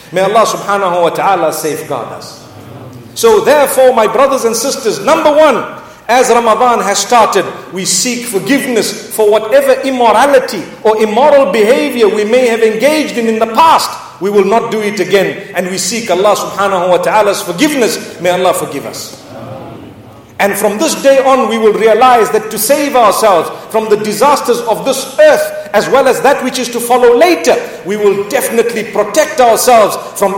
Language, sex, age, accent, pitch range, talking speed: English, male, 50-69, South African, 200-265 Hz, 170 wpm